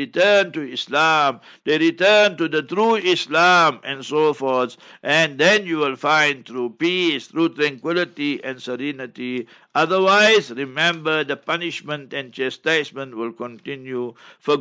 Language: English